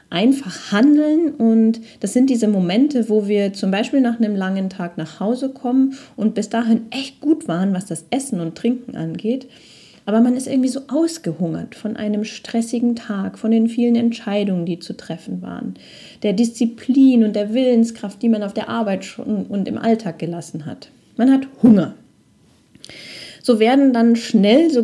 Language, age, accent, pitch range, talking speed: German, 30-49, German, 185-235 Hz, 170 wpm